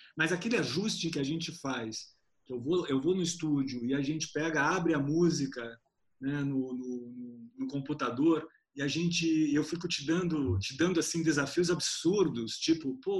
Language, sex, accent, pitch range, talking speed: Portuguese, male, Brazilian, 140-180 Hz, 175 wpm